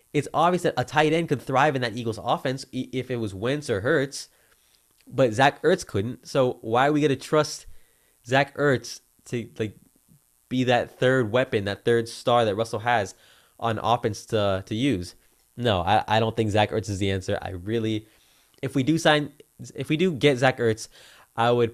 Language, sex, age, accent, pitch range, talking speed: English, male, 20-39, American, 100-130 Hz, 200 wpm